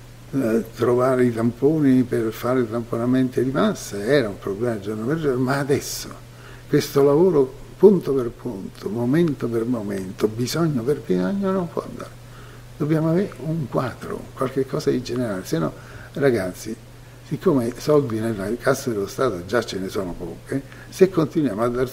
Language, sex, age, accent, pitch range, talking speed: Italian, male, 60-79, native, 115-135 Hz, 160 wpm